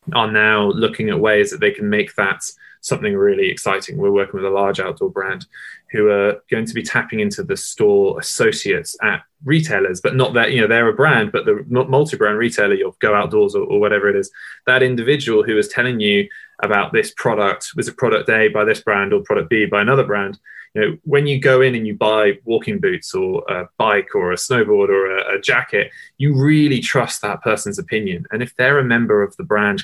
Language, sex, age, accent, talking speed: English, male, 20-39, British, 220 wpm